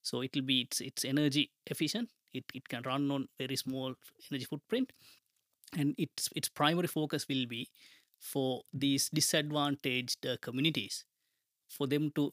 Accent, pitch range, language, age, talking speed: Indian, 130-150 Hz, English, 20-39, 150 wpm